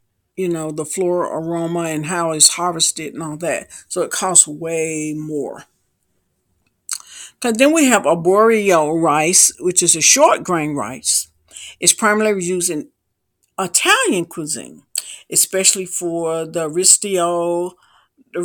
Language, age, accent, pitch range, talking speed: English, 50-69, American, 165-215 Hz, 130 wpm